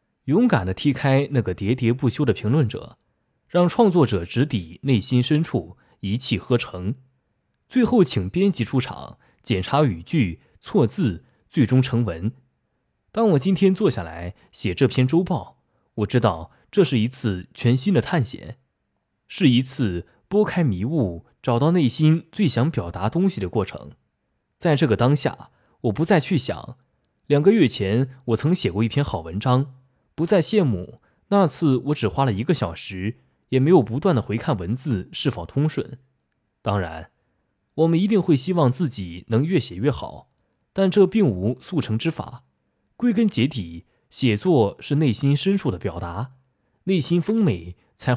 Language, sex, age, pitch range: Chinese, male, 20-39, 105-160 Hz